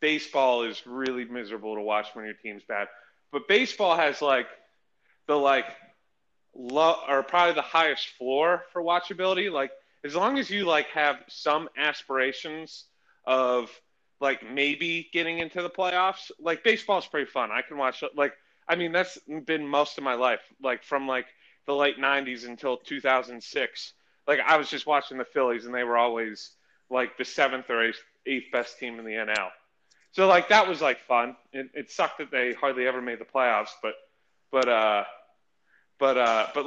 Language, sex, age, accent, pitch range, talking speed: English, male, 30-49, American, 125-165 Hz, 175 wpm